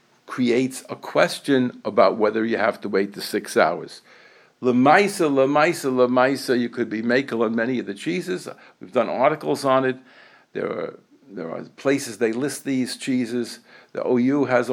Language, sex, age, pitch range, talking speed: English, male, 60-79, 115-140 Hz, 175 wpm